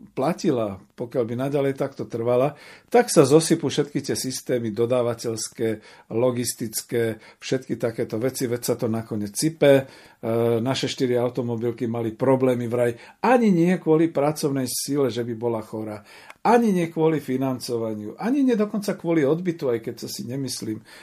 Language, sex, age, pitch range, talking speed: Slovak, male, 50-69, 115-160 Hz, 145 wpm